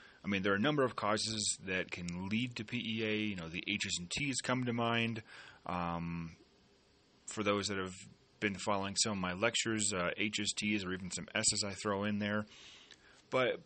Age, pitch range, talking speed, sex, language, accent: 30-49, 90-110 Hz, 200 wpm, male, English, American